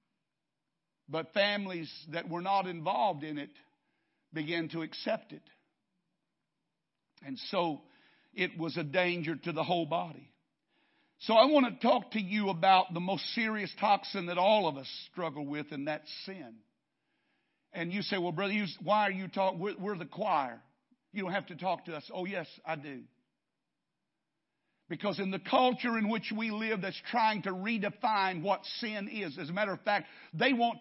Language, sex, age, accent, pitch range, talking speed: English, male, 50-69, American, 185-250 Hz, 175 wpm